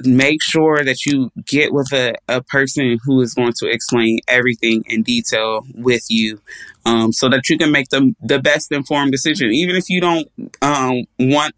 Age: 20-39